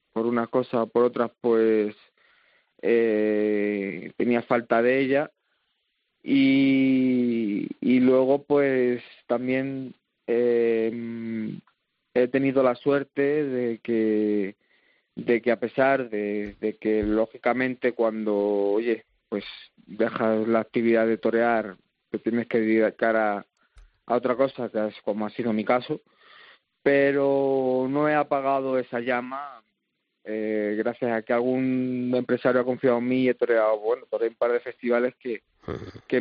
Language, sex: Spanish, male